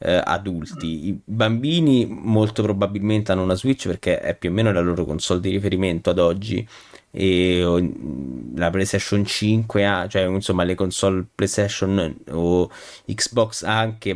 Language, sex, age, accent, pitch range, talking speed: Italian, male, 20-39, native, 95-115 Hz, 140 wpm